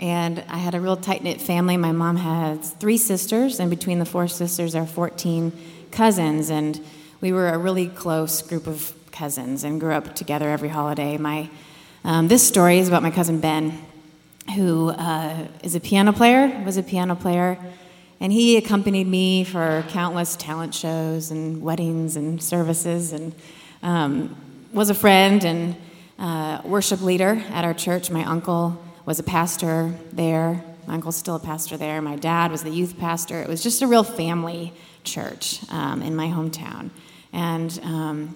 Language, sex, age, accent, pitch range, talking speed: English, female, 30-49, American, 160-180 Hz, 170 wpm